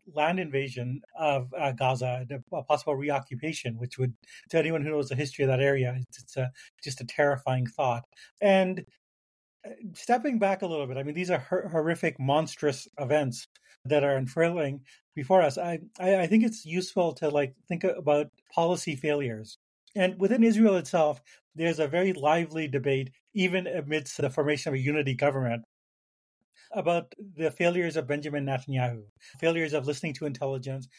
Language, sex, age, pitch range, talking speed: English, male, 40-59, 135-185 Hz, 165 wpm